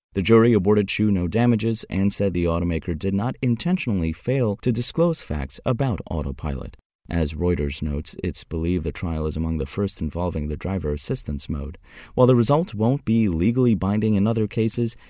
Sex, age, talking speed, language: male, 30-49, 180 wpm, English